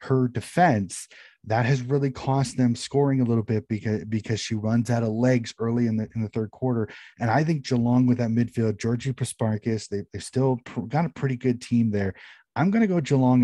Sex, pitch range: male, 105-125 Hz